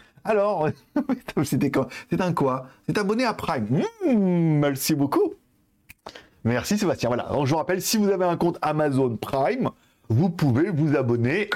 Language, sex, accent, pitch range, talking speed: French, male, French, 135-195 Hz, 150 wpm